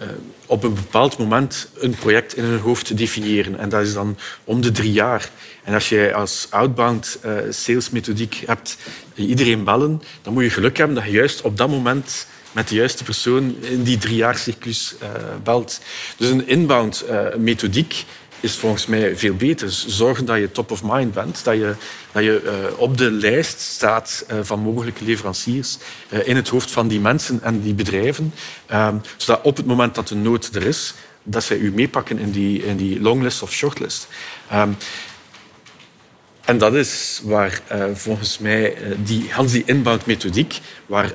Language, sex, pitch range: Dutch, male, 105-125 Hz